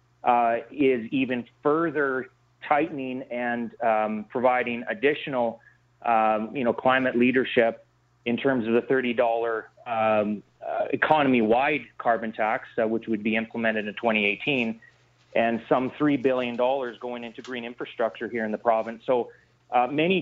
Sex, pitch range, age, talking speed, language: male, 120-140 Hz, 30-49, 130 wpm, English